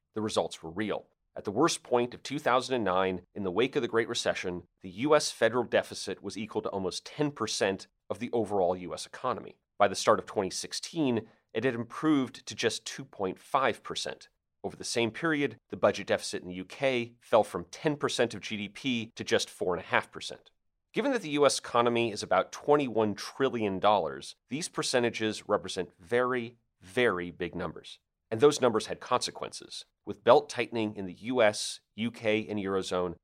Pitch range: 95-125 Hz